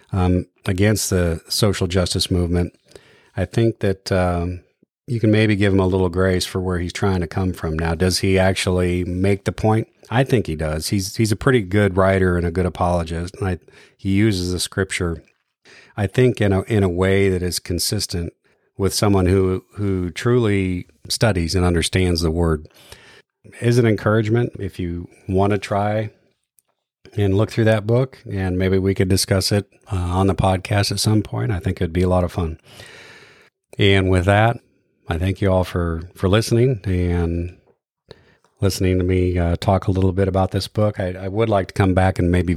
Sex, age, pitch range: male, 40-59, 90-105 Hz